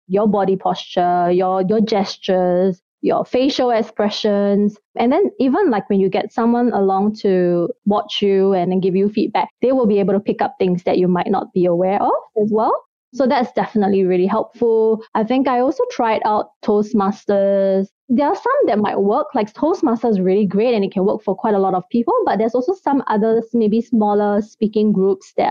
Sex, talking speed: female, 200 wpm